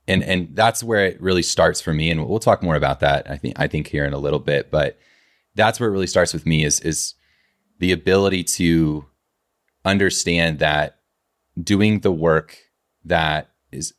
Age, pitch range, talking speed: 30-49, 75-95 Hz, 190 wpm